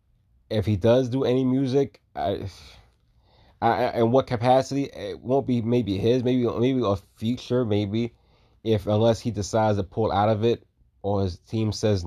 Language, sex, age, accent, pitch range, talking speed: English, male, 20-39, American, 90-105 Hz, 170 wpm